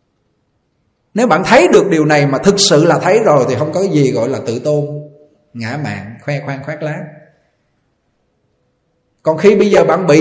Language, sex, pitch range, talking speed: Vietnamese, male, 125-170 Hz, 190 wpm